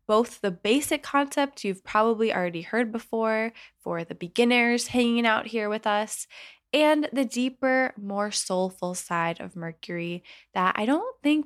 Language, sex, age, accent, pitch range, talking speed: English, female, 10-29, American, 190-255 Hz, 150 wpm